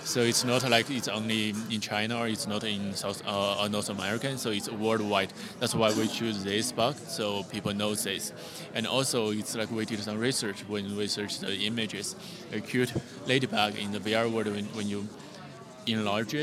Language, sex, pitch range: English, male, 105-115 Hz